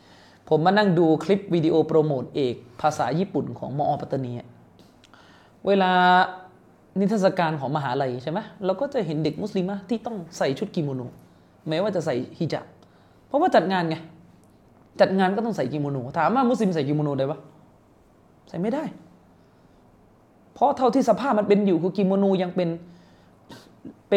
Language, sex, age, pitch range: Thai, male, 20-39, 150-210 Hz